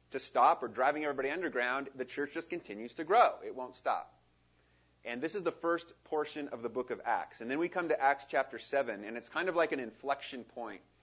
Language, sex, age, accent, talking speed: English, male, 30-49, American, 230 wpm